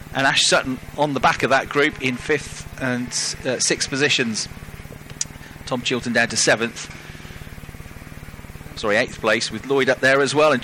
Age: 40-59